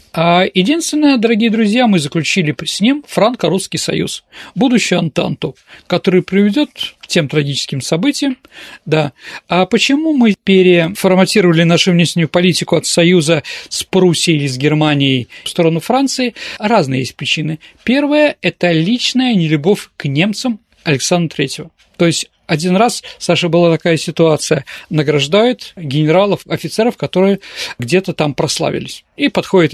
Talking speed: 130 wpm